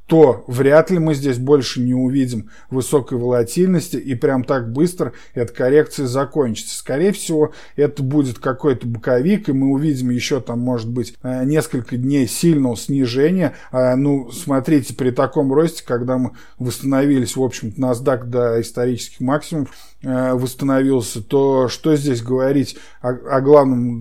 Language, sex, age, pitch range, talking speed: Russian, male, 20-39, 125-145 Hz, 135 wpm